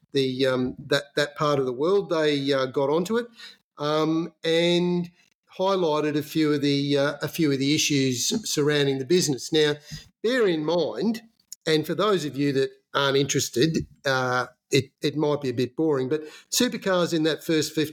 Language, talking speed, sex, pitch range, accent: English, 180 wpm, male, 135-160 Hz, Australian